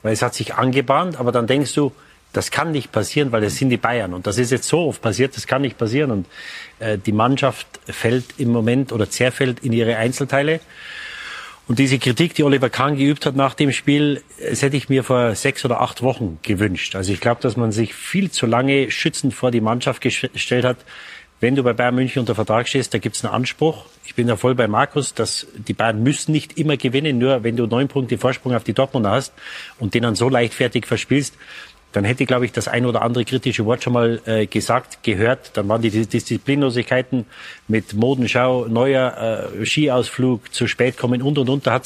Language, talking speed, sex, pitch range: German, 215 wpm, male, 115-135 Hz